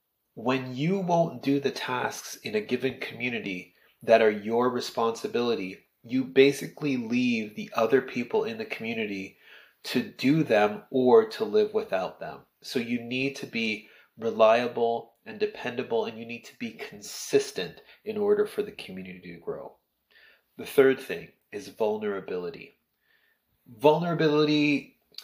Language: English